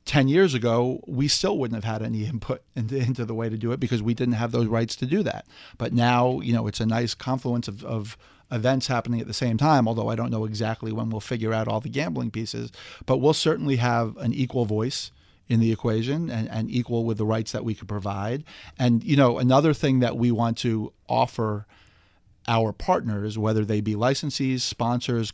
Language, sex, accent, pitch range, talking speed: English, male, American, 110-125 Hz, 215 wpm